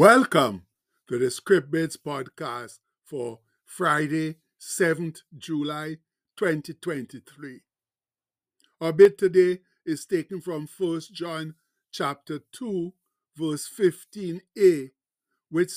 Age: 50-69